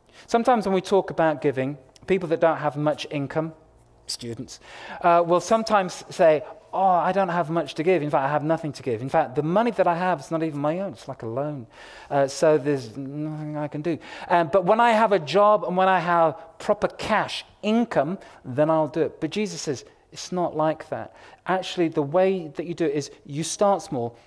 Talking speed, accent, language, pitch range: 225 wpm, British, English, 140-185 Hz